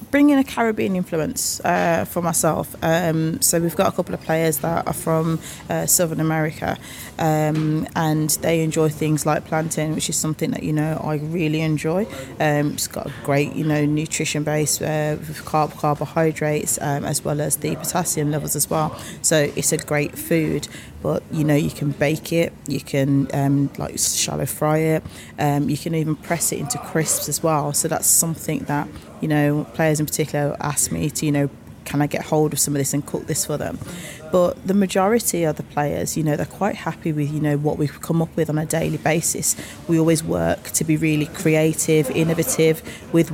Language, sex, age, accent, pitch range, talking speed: English, female, 20-39, British, 150-165 Hz, 205 wpm